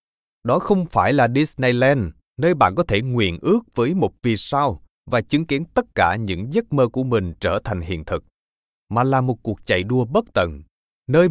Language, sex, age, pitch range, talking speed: Vietnamese, male, 20-39, 100-140 Hz, 200 wpm